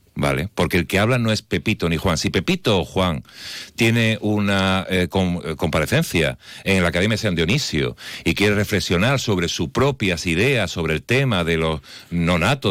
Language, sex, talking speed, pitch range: Spanish, male, 180 wpm, 85-115 Hz